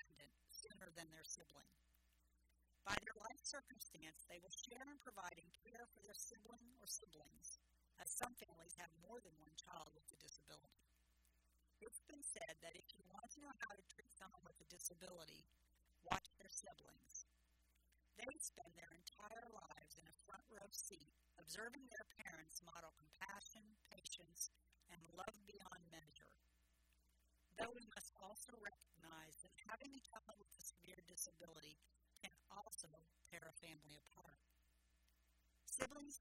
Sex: female